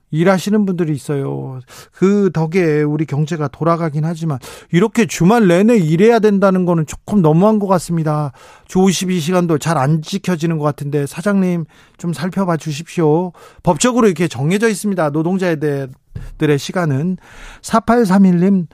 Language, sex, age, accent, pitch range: Korean, male, 40-59, native, 150-195 Hz